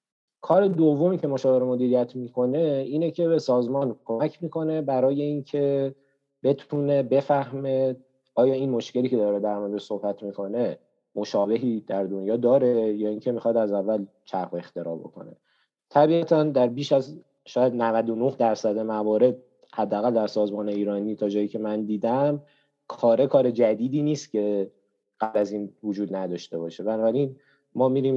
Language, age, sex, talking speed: Persian, 30-49, male, 145 wpm